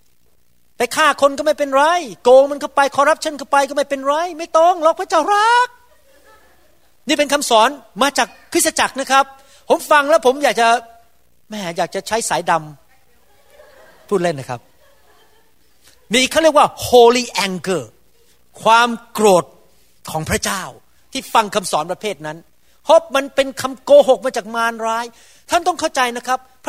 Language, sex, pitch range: Thai, male, 170-270 Hz